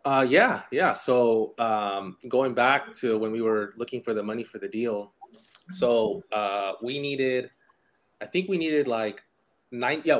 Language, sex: English, male